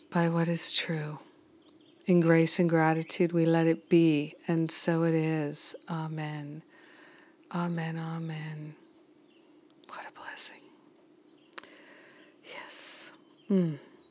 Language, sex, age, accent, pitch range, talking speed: English, female, 50-69, American, 165-245 Hz, 100 wpm